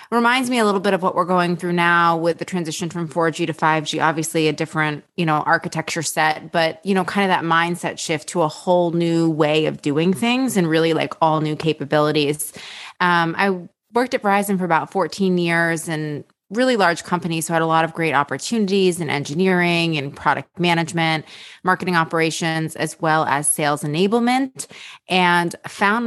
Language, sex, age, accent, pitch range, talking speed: English, female, 20-39, American, 155-185 Hz, 190 wpm